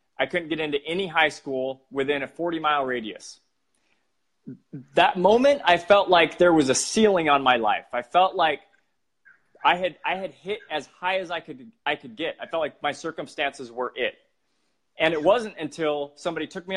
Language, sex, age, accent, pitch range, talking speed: English, male, 30-49, American, 135-180 Hz, 190 wpm